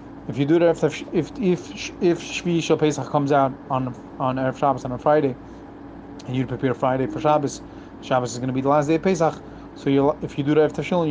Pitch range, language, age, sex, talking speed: 135-150 Hz, English, 30-49, male, 225 wpm